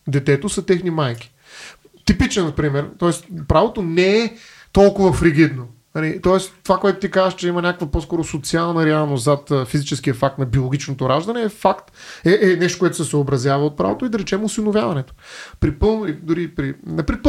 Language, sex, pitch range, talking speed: Bulgarian, male, 145-185 Hz, 165 wpm